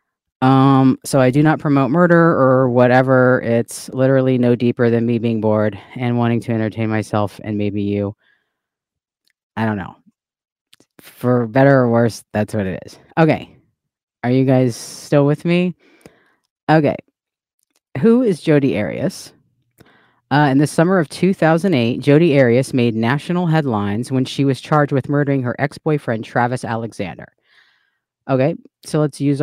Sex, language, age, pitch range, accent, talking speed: female, English, 30-49, 120-150 Hz, American, 150 wpm